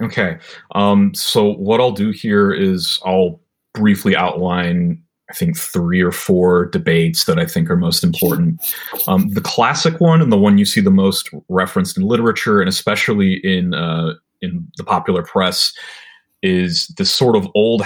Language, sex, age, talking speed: English, male, 30-49, 170 wpm